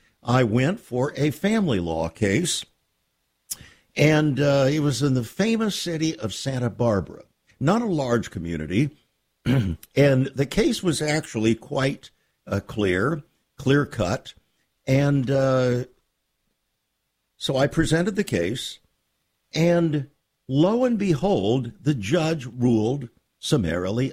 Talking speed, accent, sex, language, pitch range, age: 115 wpm, American, male, English, 110-150 Hz, 60-79